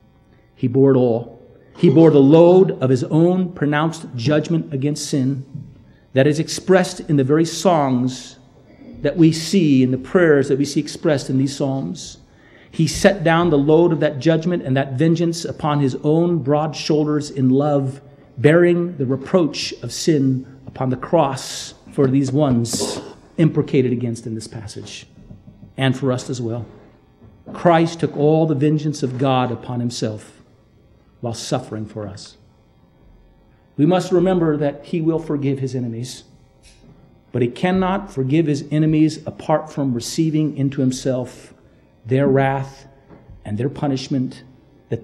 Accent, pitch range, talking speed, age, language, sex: American, 130-160 Hz, 150 wpm, 40-59, English, male